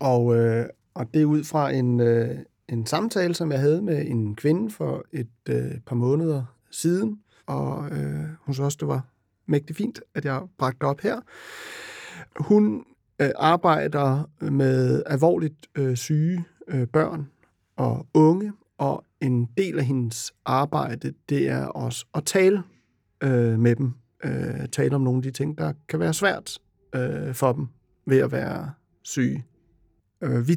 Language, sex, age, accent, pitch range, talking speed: Danish, male, 60-79, native, 120-160 Hz, 165 wpm